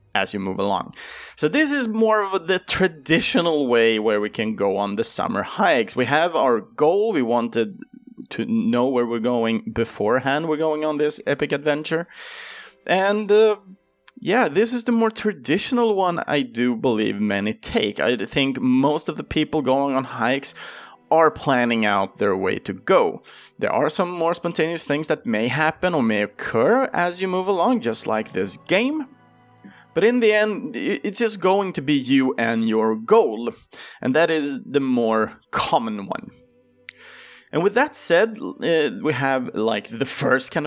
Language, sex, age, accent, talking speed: Swedish, male, 30-49, Norwegian, 175 wpm